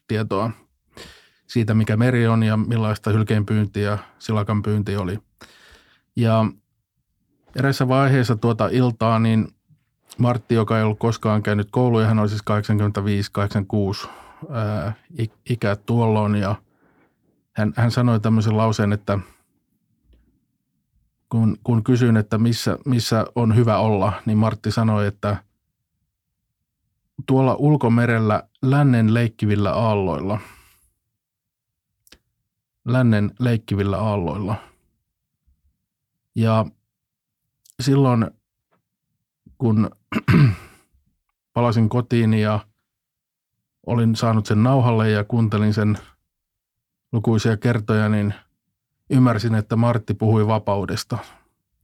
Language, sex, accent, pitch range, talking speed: Finnish, male, native, 105-120 Hz, 90 wpm